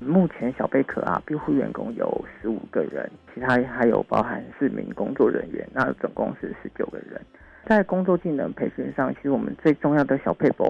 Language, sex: Chinese, male